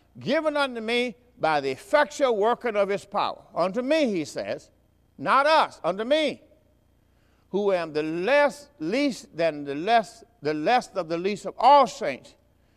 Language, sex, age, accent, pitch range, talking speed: English, male, 50-69, American, 165-275 Hz, 160 wpm